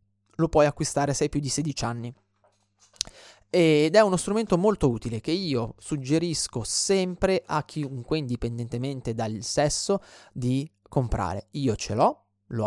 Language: English